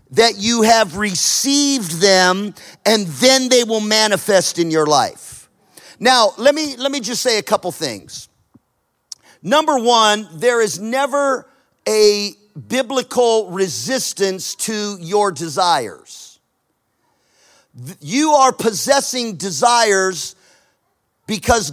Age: 40-59